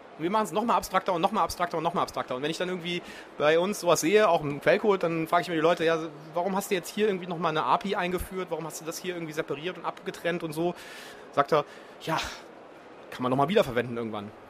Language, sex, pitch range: German, male, 140-180 Hz